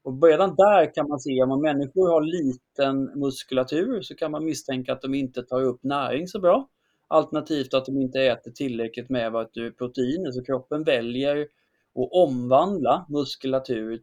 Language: Swedish